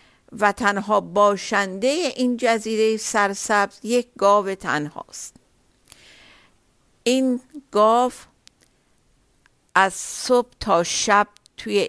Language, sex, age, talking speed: Persian, female, 50-69, 80 wpm